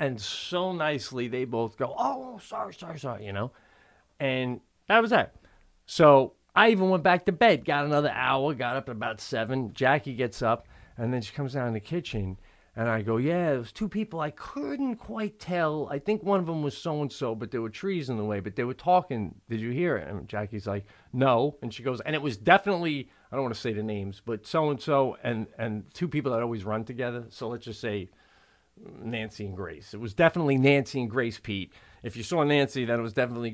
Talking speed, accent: 225 wpm, American